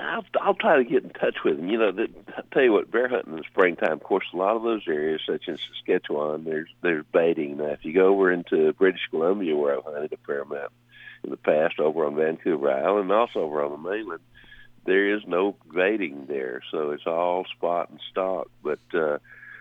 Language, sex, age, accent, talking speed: English, male, 60-79, American, 220 wpm